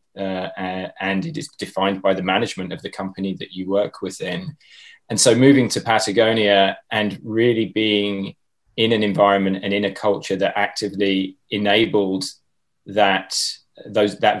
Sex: male